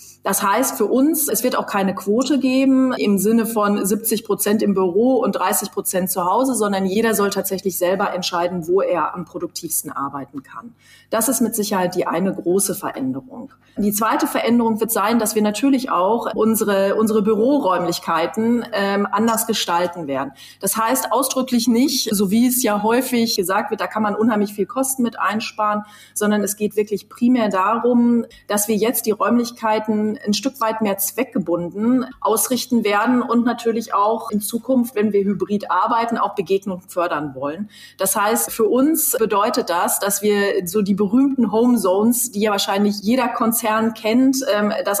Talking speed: 170 wpm